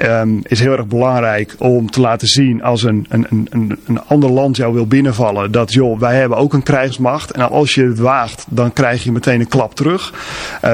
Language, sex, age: Dutch, male, 40-59